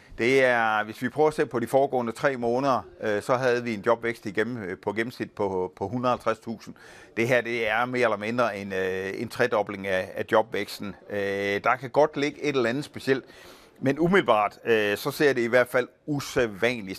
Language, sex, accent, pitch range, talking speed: Danish, male, native, 100-125 Hz, 175 wpm